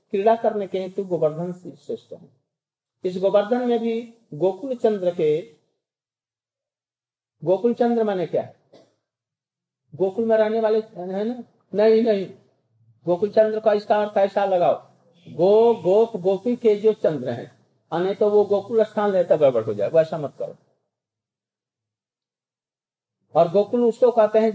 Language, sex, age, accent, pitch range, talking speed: Hindi, male, 50-69, native, 165-225 Hz, 145 wpm